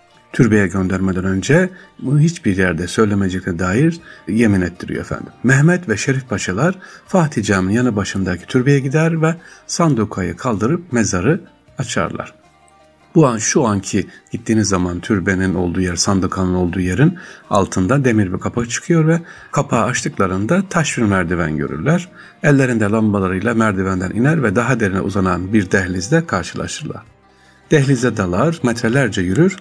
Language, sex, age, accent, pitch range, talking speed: Turkish, male, 60-79, native, 95-140 Hz, 130 wpm